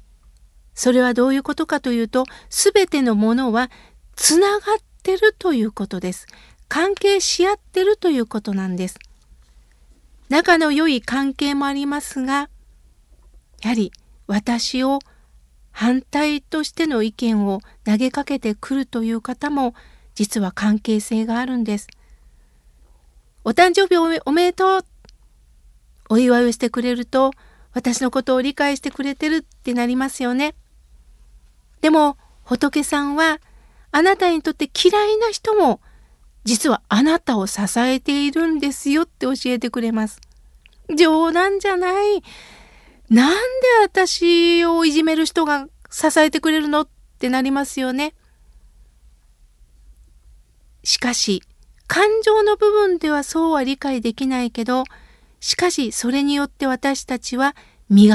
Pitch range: 225-320 Hz